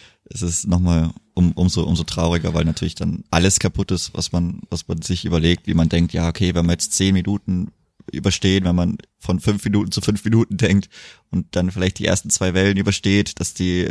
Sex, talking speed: male, 210 wpm